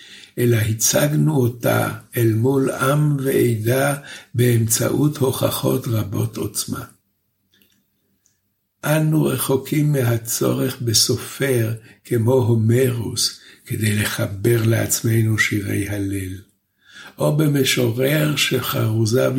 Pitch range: 110-135 Hz